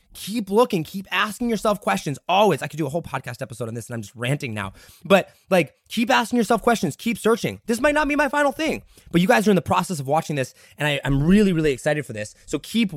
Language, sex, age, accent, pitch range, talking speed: English, male, 20-39, American, 150-195 Hz, 255 wpm